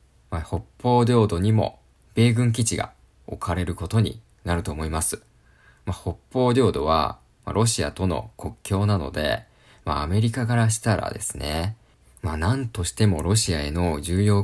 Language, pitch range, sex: Japanese, 85-110 Hz, male